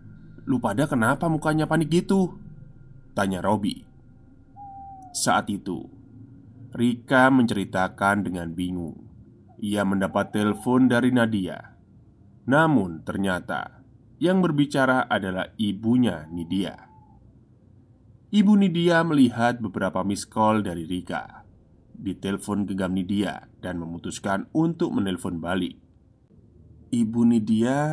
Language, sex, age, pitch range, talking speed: Indonesian, male, 20-39, 100-145 Hz, 95 wpm